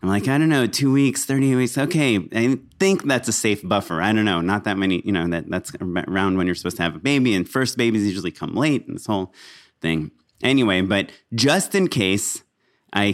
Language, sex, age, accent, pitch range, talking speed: English, male, 30-49, American, 100-125 Hz, 230 wpm